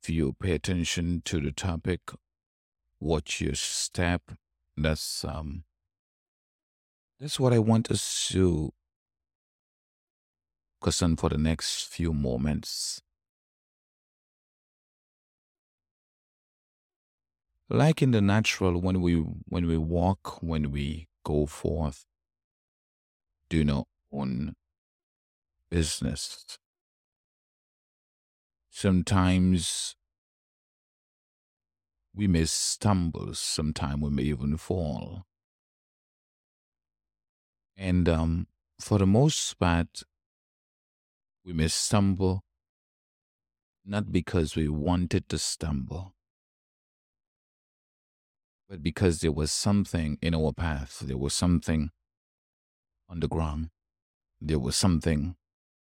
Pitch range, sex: 75-90 Hz, male